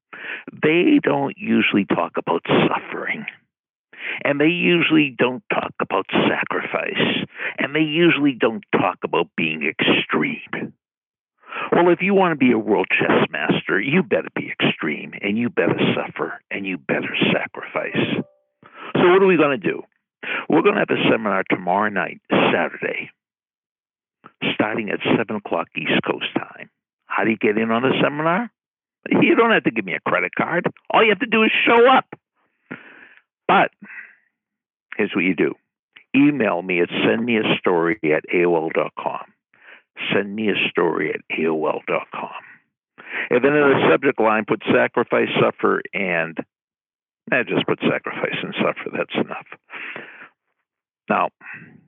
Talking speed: 145 wpm